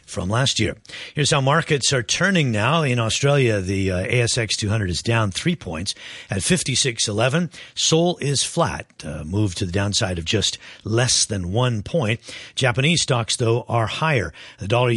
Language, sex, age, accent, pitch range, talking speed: English, male, 50-69, American, 100-140 Hz, 170 wpm